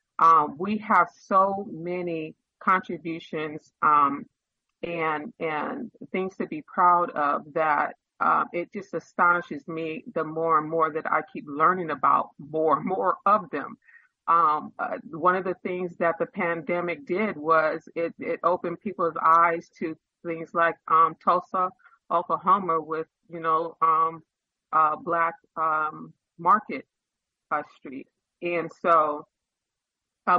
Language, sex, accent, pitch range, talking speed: English, female, American, 160-185 Hz, 135 wpm